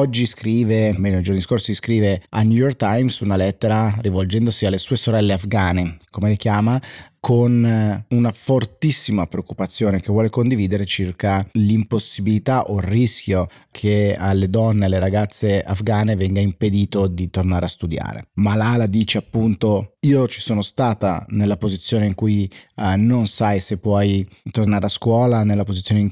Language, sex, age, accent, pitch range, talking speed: Italian, male, 30-49, native, 95-115 Hz, 155 wpm